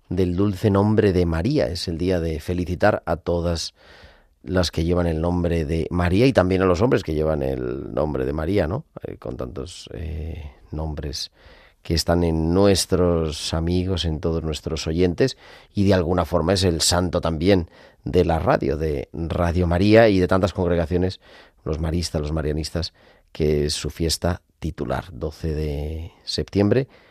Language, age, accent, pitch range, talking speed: Spanish, 40-59, Spanish, 80-105 Hz, 165 wpm